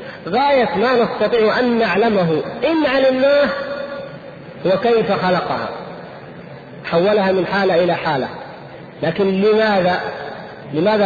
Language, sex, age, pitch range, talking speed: Arabic, male, 50-69, 170-215 Hz, 100 wpm